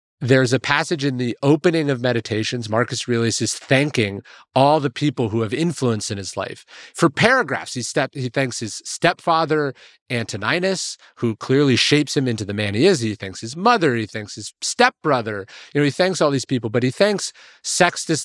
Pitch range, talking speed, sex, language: 110-145 Hz, 190 wpm, male, English